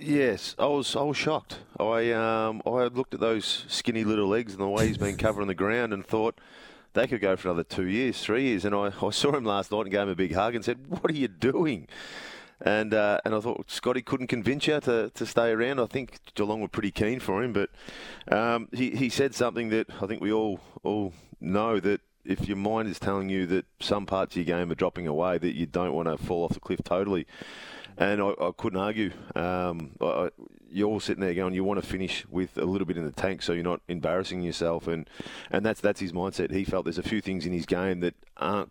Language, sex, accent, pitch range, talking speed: English, male, Australian, 90-110 Hz, 245 wpm